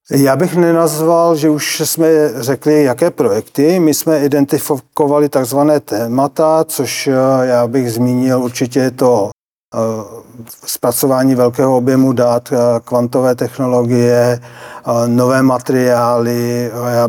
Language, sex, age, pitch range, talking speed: Czech, male, 40-59, 125-145 Hz, 100 wpm